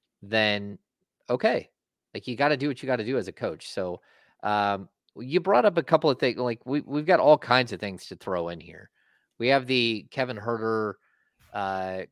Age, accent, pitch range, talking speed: 30-49, American, 105-135 Hz, 210 wpm